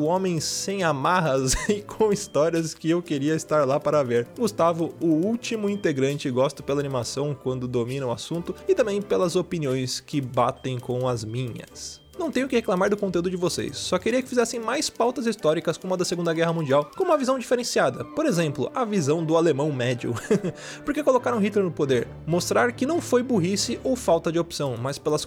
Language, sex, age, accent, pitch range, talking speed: Portuguese, male, 20-39, Brazilian, 135-215 Hz, 195 wpm